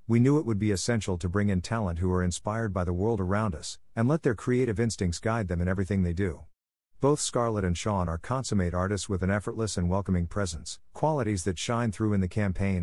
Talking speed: 230 wpm